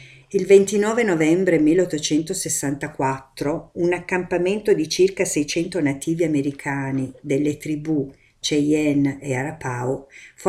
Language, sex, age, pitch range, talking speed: Italian, female, 50-69, 135-175 Hz, 95 wpm